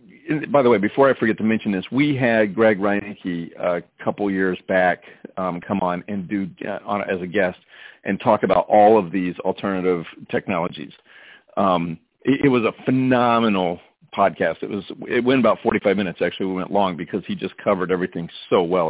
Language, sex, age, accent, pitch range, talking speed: English, male, 40-59, American, 90-110 Hz, 195 wpm